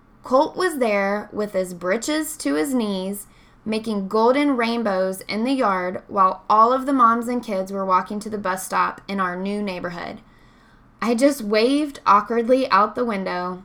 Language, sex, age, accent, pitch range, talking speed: English, female, 10-29, American, 200-260 Hz, 170 wpm